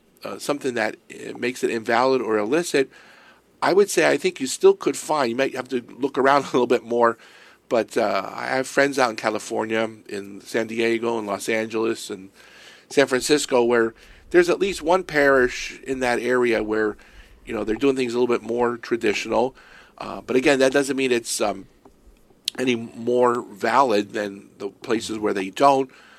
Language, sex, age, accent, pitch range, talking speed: English, male, 50-69, American, 115-140 Hz, 190 wpm